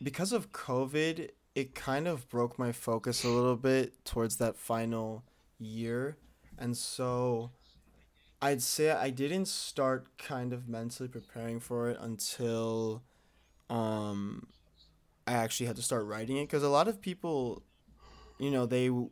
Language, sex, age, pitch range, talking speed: English, male, 20-39, 115-130 Hz, 145 wpm